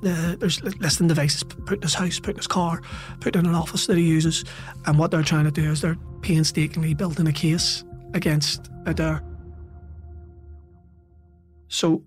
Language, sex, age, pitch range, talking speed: English, male, 30-49, 150-175 Hz, 170 wpm